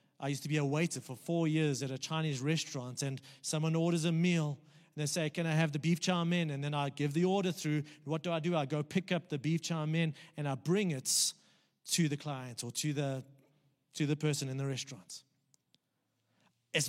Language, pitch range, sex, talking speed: English, 145-185 Hz, male, 225 wpm